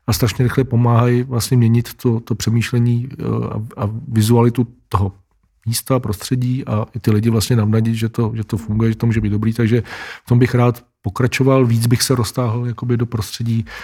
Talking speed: 185 wpm